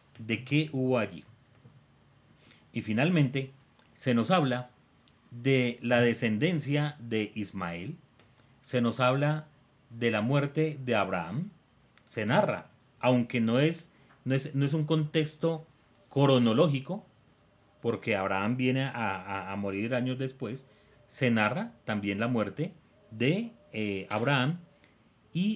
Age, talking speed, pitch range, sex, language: 40-59, 120 wpm, 115-150 Hz, male, Spanish